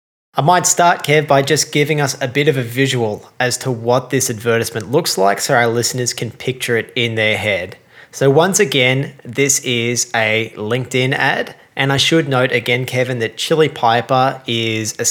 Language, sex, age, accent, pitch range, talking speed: English, male, 20-39, Australian, 115-135 Hz, 190 wpm